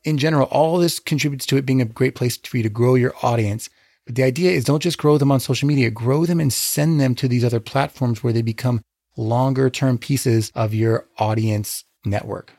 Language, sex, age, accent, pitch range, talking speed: English, male, 30-49, American, 115-135 Hz, 230 wpm